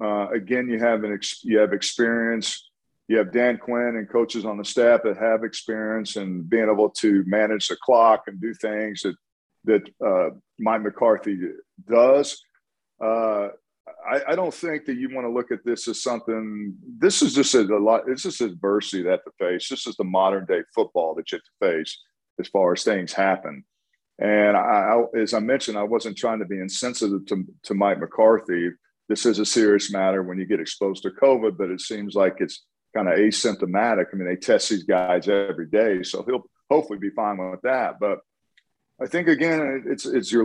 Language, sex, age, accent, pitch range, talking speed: English, male, 50-69, American, 100-120 Hz, 200 wpm